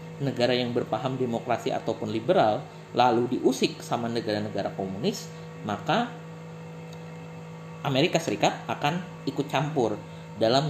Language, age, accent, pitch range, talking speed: Indonesian, 30-49, native, 115-160 Hz, 100 wpm